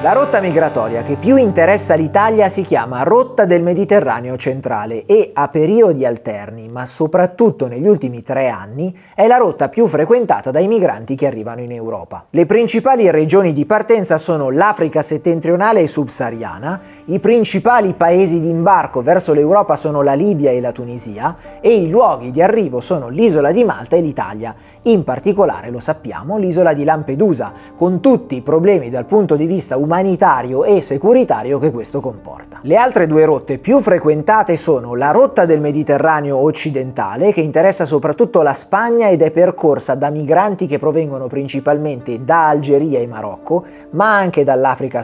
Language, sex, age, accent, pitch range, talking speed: Italian, male, 30-49, native, 135-195 Hz, 165 wpm